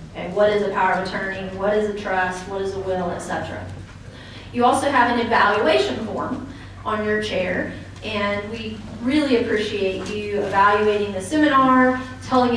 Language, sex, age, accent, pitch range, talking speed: English, female, 30-49, American, 185-235 Hz, 160 wpm